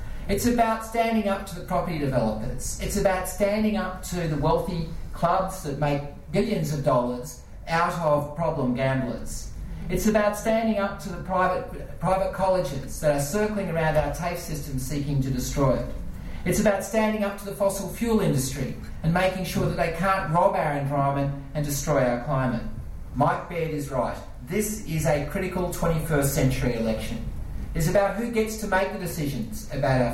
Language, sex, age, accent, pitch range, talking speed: English, male, 40-59, Australian, 140-190 Hz, 175 wpm